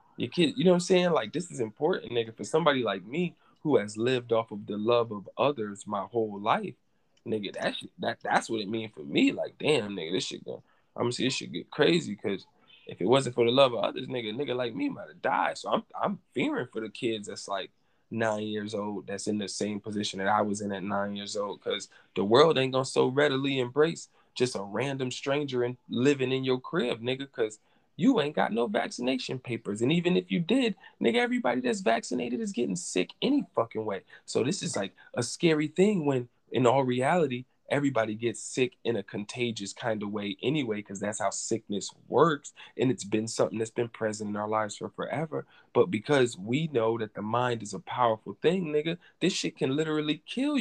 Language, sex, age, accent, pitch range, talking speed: English, male, 10-29, American, 110-150 Hz, 225 wpm